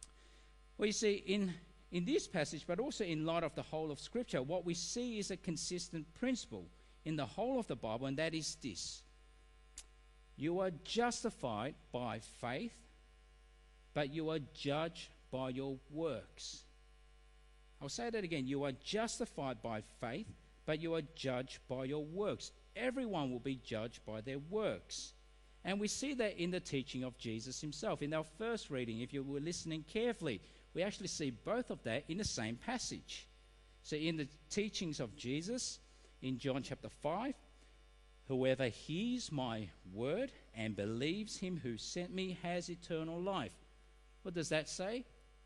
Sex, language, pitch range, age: male, English, 125-185 Hz, 50-69